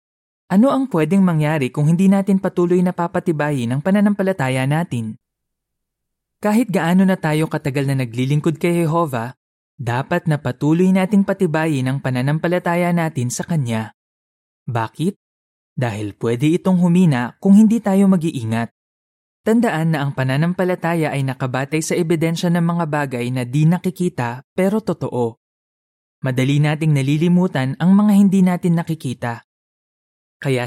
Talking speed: 130 wpm